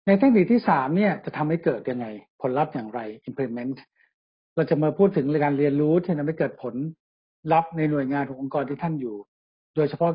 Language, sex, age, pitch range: Thai, male, 60-79, 135-170 Hz